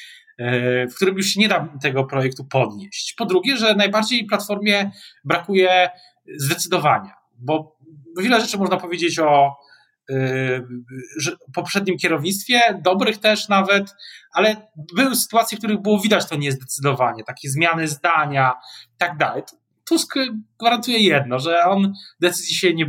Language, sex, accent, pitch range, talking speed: Polish, male, native, 145-200 Hz, 130 wpm